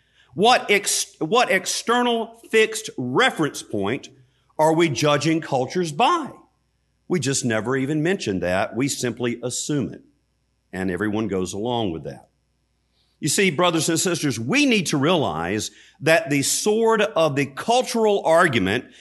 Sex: male